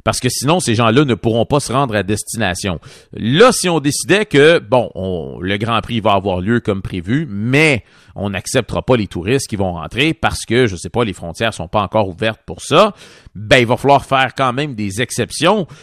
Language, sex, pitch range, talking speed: French, male, 100-135 Hz, 220 wpm